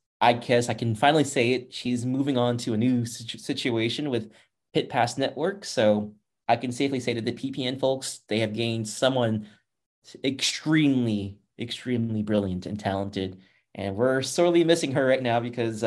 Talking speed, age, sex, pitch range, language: 165 wpm, 20-39, male, 110-135 Hz, English